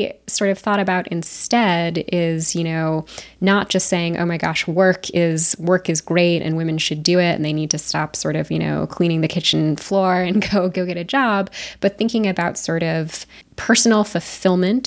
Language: English